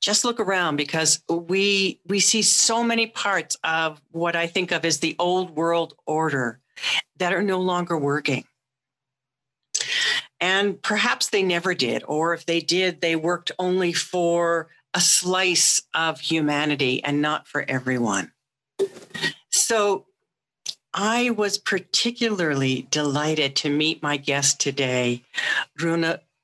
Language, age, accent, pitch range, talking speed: English, 50-69, American, 145-195 Hz, 130 wpm